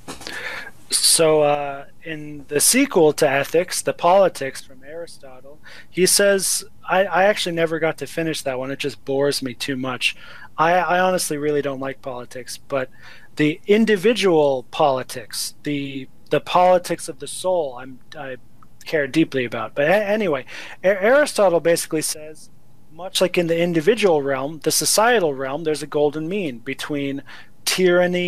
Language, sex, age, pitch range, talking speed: English, male, 30-49, 140-175 Hz, 155 wpm